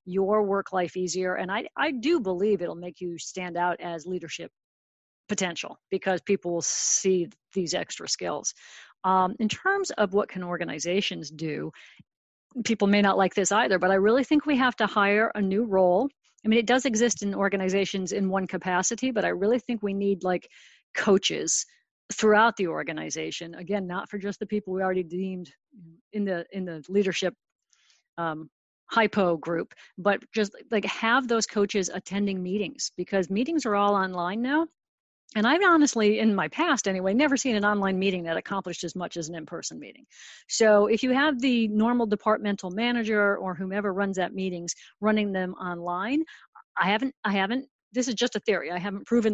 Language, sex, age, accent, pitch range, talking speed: English, female, 50-69, American, 180-220 Hz, 180 wpm